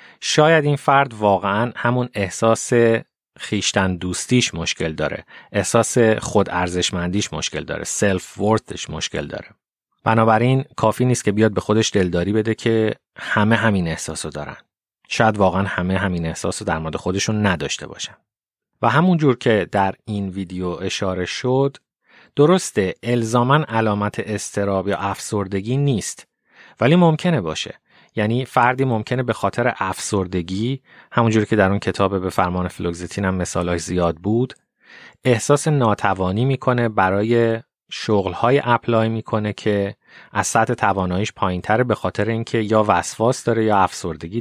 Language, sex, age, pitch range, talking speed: Persian, male, 30-49, 95-120 Hz, 135 wpm